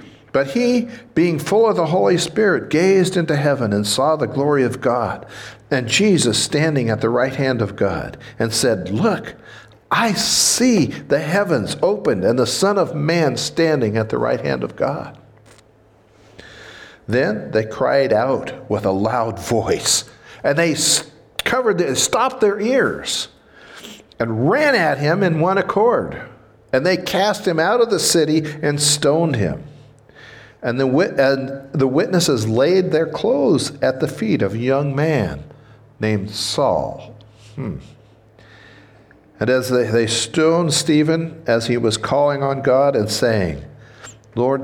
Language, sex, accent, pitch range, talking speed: English, male, American, 115-170 Hz, 150 wpm